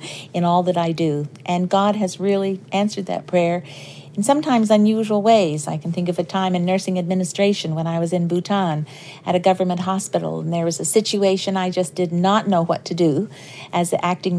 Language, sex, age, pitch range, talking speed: English, female, 50-69, 170-200 Hz, 210 wpm